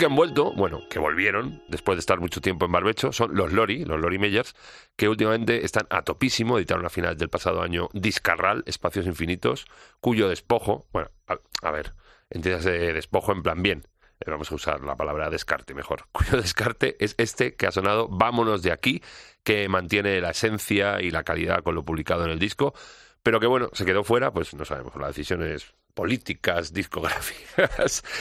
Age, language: 40-59, Spanish